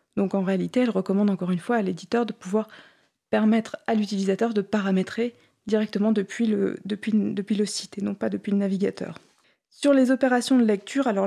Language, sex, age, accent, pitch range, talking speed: French, female, 20-39, French, 195-235 Hz, 180 wpm